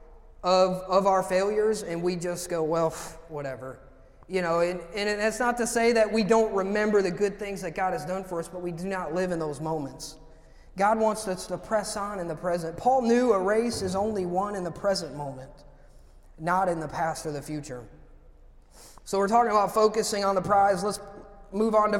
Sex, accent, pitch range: male, American, 170-215 Hz